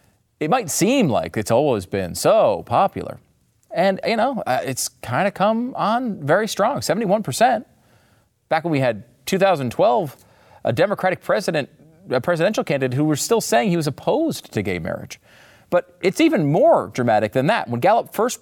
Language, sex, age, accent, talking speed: English, male, 40-59, American, 165 wpm